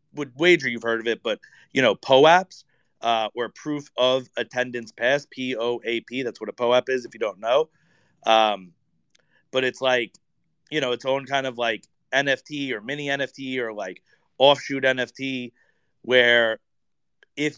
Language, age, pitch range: English, 30-49, 120-145 Hz